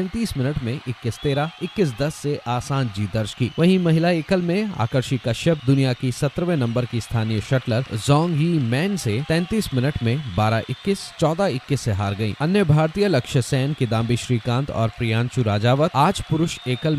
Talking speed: 180 wpm